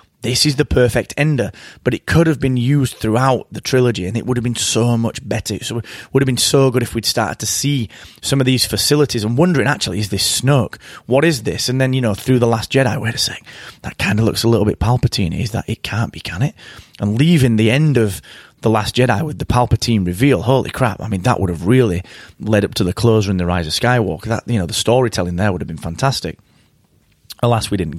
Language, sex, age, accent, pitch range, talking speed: English, male, 20-39, British, 110-140 Hz, 245 wpm